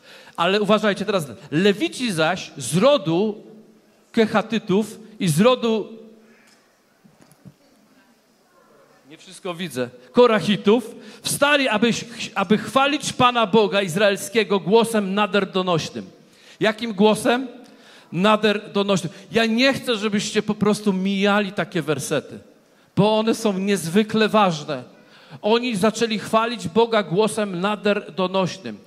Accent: native